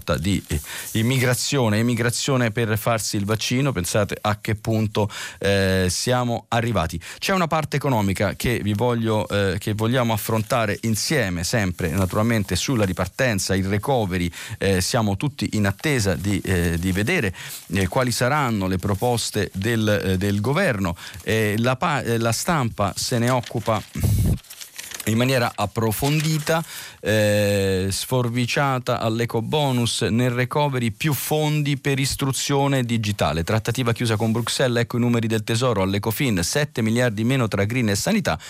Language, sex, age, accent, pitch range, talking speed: Italian, male, 40-59, native, 100-125 Hz, 140 wpm